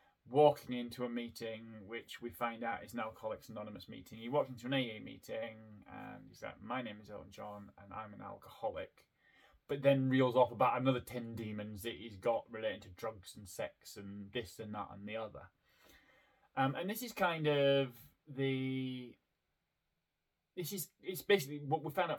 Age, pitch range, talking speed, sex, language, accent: 20-39, 110-150 Hz, 185 wpm, male, English, British